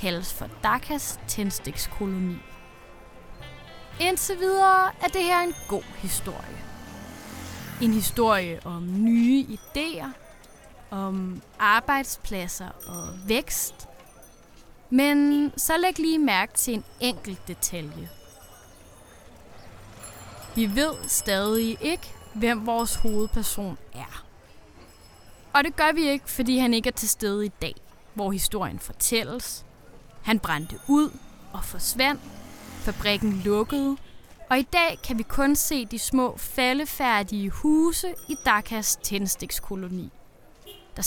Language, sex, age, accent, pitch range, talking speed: English, female, 20-39, Danish, 185-270 Hz, 110 wpm